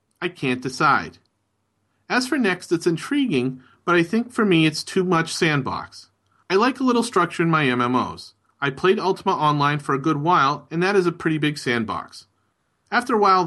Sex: male